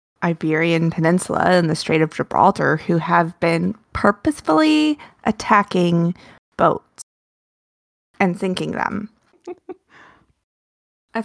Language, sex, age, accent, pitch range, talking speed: English, female, 20-39, American, 170-220 Hz, 90 wpm